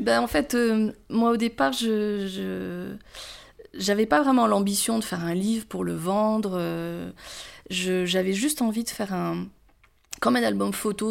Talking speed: 165 wpm